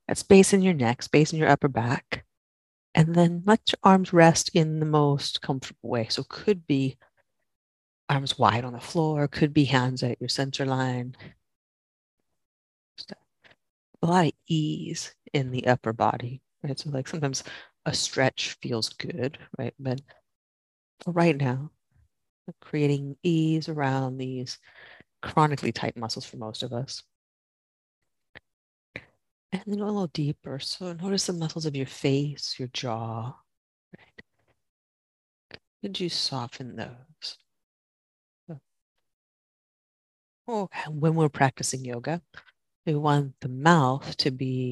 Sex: female